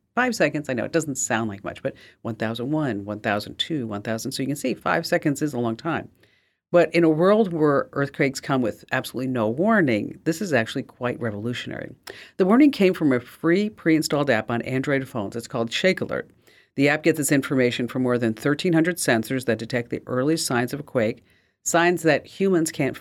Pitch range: 120-160 Hz